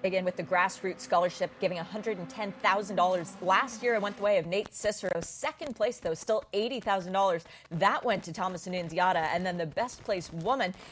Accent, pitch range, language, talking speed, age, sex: American, 180-245 Hz, English, 175 wpm, 30-49, female